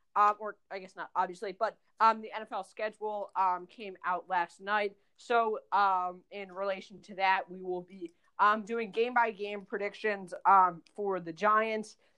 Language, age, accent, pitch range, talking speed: English, 20-39, American, 190-215 Hz, 170 wpm